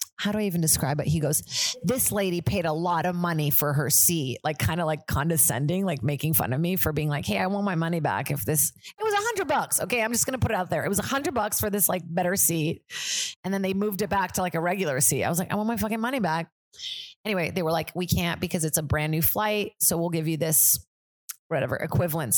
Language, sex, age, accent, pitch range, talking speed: English, female, 30-49, American, 150-195 Hz, 275 wpm